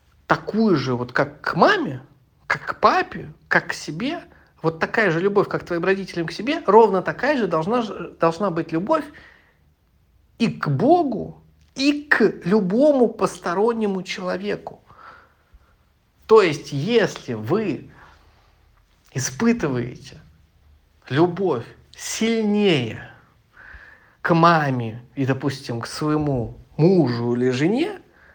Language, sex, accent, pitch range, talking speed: Russian, male, native, 140-225 Hz, 110 wpm